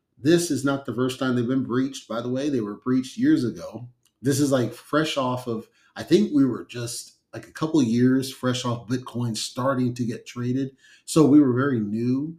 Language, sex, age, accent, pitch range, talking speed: English, male, 40-59, American, 115-140 Hz, 220 wpm